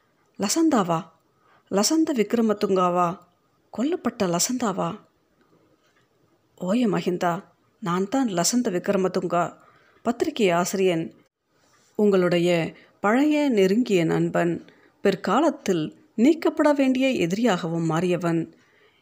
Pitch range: 175-240 Hz